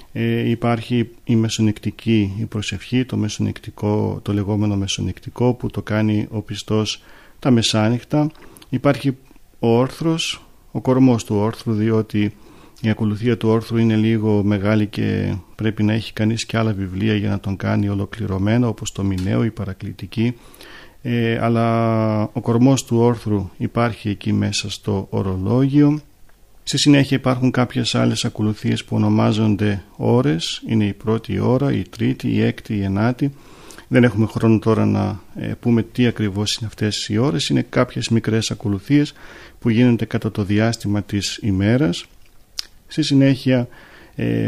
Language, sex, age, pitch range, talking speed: Greek, male, 40-59, 105-120 Hz, 140 wpm